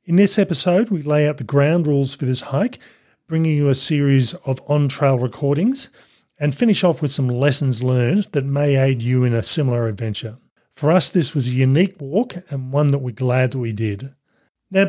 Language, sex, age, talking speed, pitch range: English, male, 40-59, 200 wpm, 130-160 Hz